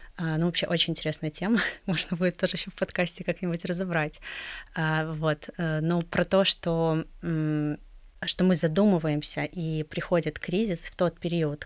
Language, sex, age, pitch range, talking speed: Russian, female, 20-39, 160-185 Hz, 140 wpm